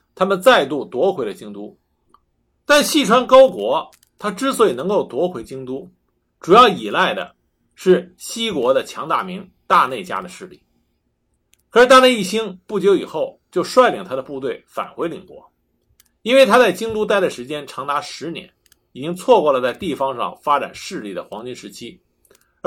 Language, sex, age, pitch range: Chinese, male, 50-69, 165-255 Hz